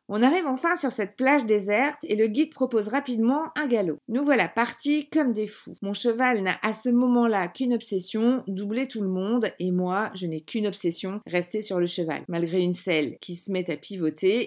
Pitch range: 185-245 Hz